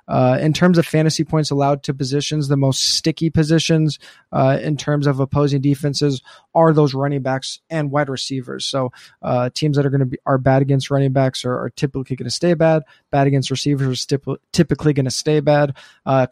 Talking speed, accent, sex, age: 205 wpm, American, male, 20-39